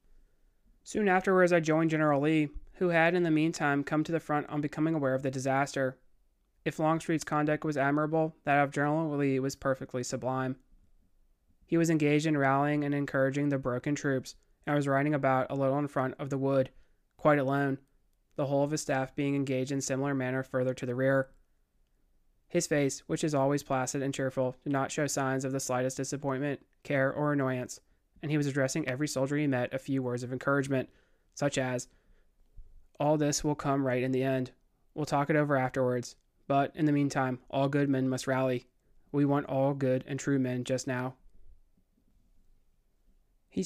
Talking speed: 190 wpm